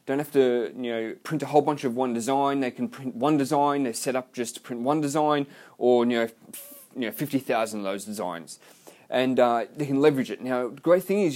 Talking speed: 245 wpm